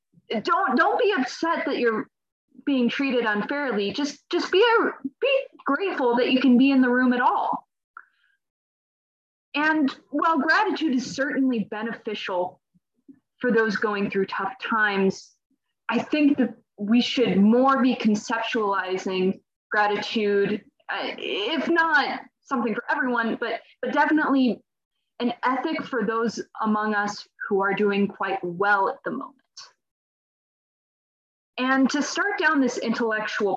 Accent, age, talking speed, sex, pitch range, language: American, 20-39, 130 wpm, female, 205-275 Hz, English